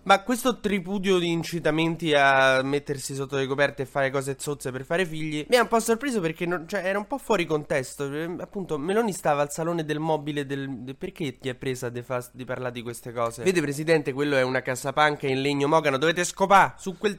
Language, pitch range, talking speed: Italian, 130-170 Hz, 215 wpm